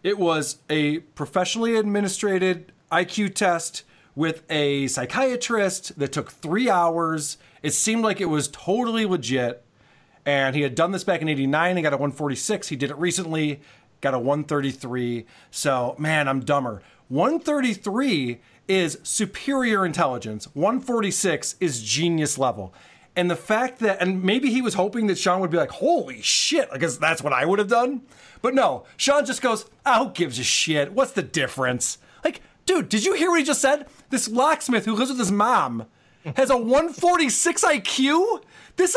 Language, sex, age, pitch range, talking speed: English, male, 30-49, 145-235 Hz, 170 wpm